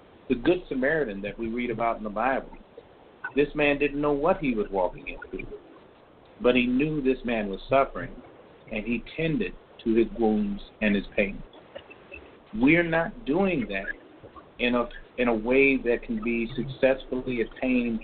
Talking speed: 165 wpm